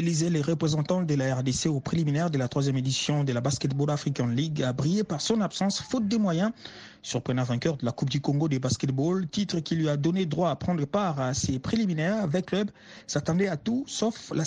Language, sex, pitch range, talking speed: French, male, 140-190 Hz, 215 wpm